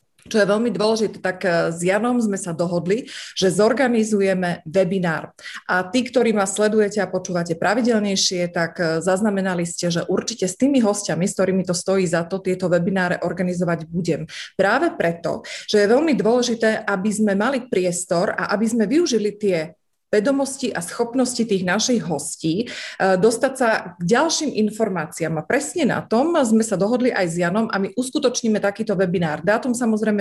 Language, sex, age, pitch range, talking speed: Slovak, female, 30-49, 185-225 Hz, 165 wpm